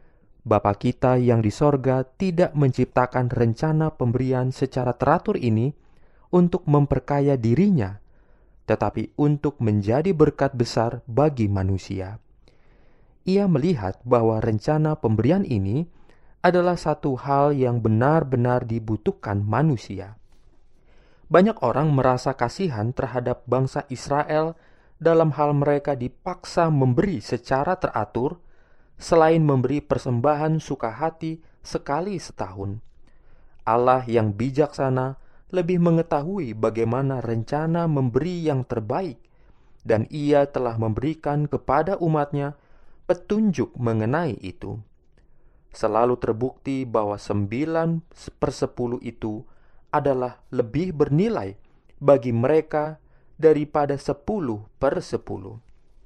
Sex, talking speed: male, 95 wpm